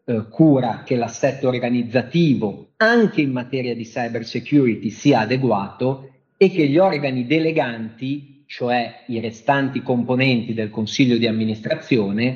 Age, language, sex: 40-59, Italian, male